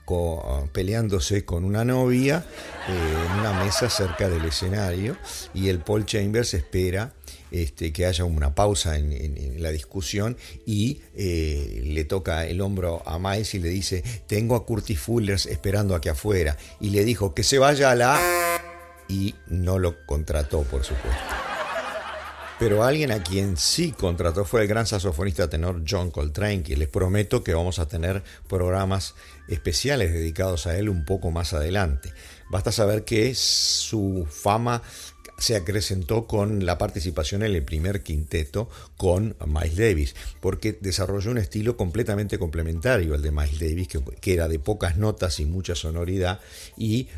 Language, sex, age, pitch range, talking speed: English, male, 50-69, 80-105 Hz, 155 wpm